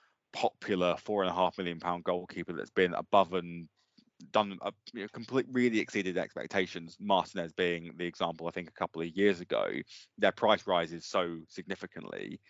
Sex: male